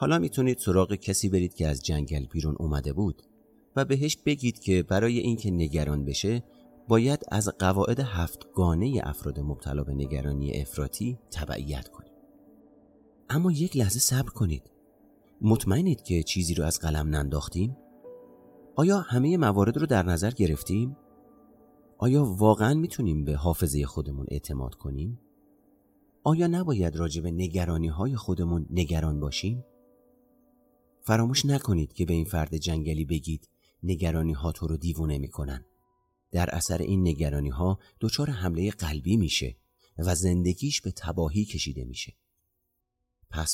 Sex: male